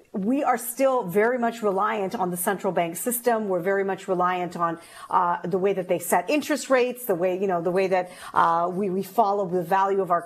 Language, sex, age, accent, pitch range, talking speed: English, female, 40-59, American, 190-235 Hz, 230 wpm